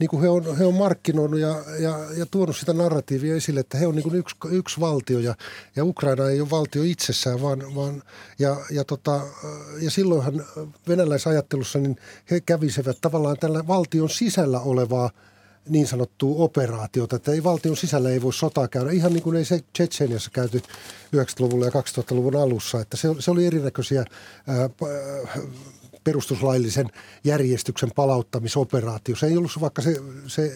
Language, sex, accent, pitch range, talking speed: Finnish, male, native, 130-165 Hz, 165 wpm